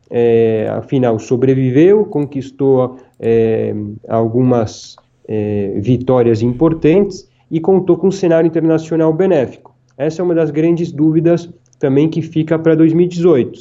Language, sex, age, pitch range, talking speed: Portuguese, male, 20-39, 115-155 Hz, 105 wpm